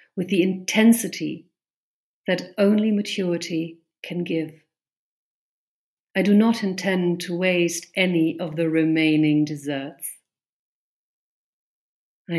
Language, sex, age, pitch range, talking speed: English, female, 50-69, 160-190 Hz, 95 wpm